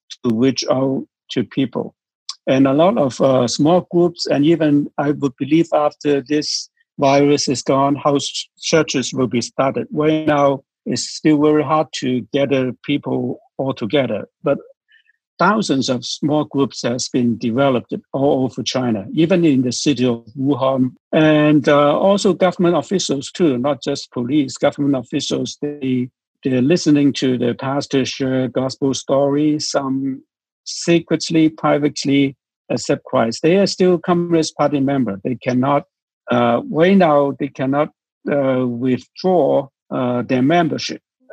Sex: male